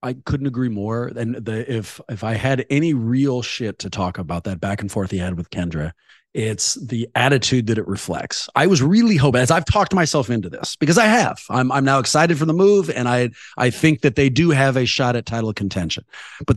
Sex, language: male, English